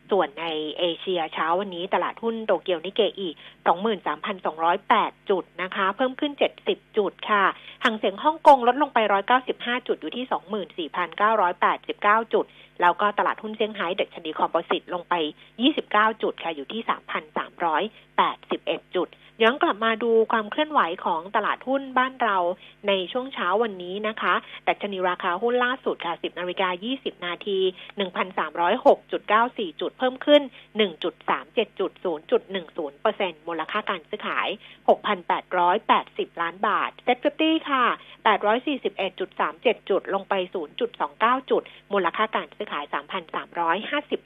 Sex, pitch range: female, 185-255 Hz